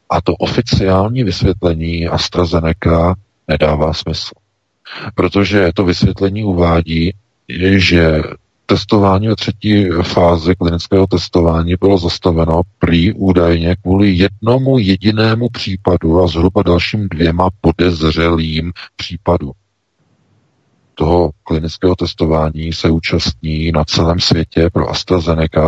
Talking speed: 100 wpm